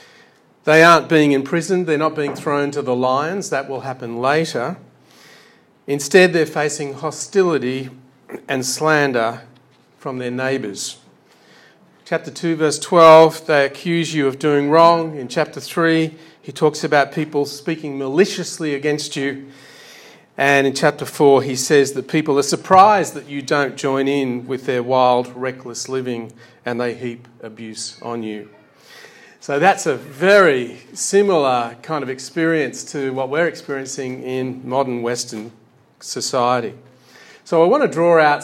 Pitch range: 130-160 Hz